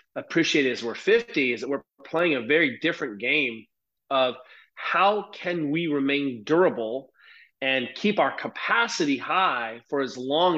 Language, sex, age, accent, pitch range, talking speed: English, male, 30-49, American, 140-180 Hz, 145 wpm